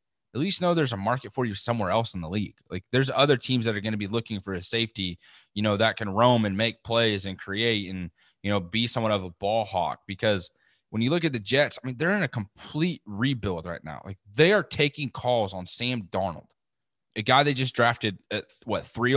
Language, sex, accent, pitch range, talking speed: English, male, American, 105-140 Hz, 240 wpm